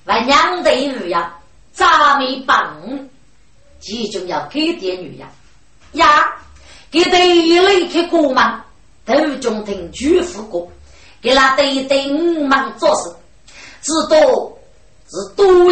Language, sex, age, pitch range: Chinese, female, 30-49, 245-345 Hz